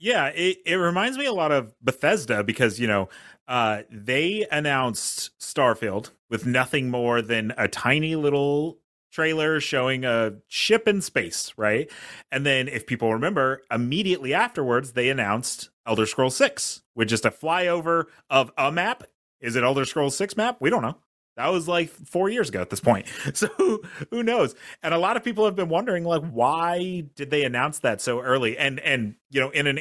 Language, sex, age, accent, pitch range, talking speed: English, male, 30-49, American, 120-175 Hz, 185 wpm